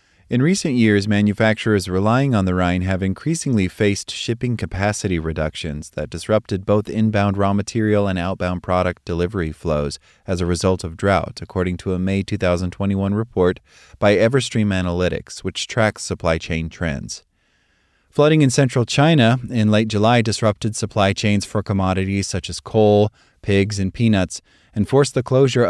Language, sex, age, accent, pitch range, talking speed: English, male, 30-49, American, 95-115 Hz, 155 wpm